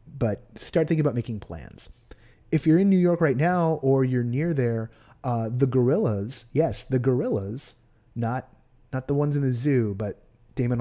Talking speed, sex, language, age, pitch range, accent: 180 wpm, male, English, 30-49, 120-150 Hz, American